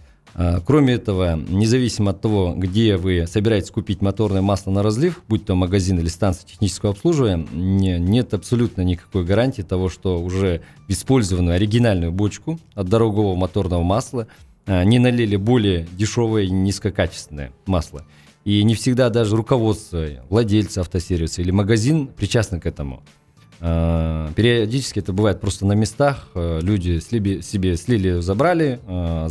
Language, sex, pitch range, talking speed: Russian, male, 90-115 Hz, 135 wpm